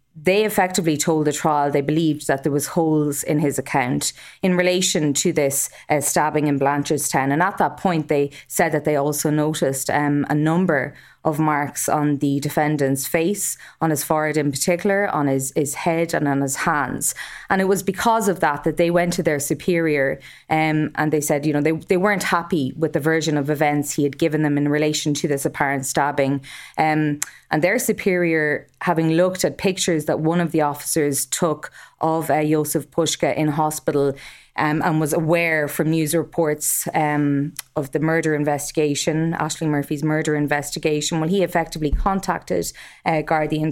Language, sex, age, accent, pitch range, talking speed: English, female, 20-39, Irish, 150-170 Hz, 185 wpm